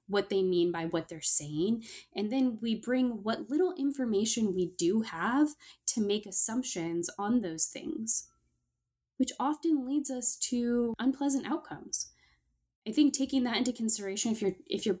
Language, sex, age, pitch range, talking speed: English, female, 10-29, 180-240 Hz, 160 wpm